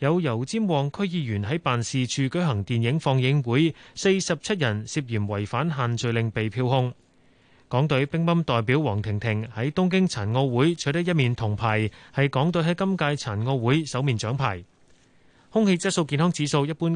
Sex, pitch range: male, 120-160 Hz